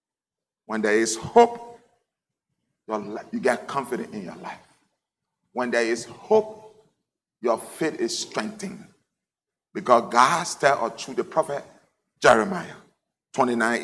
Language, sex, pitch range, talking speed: English, male, 190-240 Hz, 115 wpm